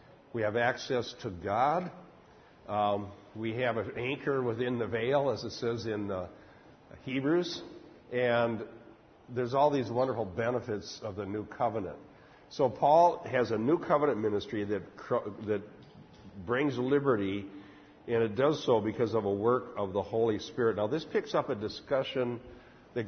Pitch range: 105-130 Hz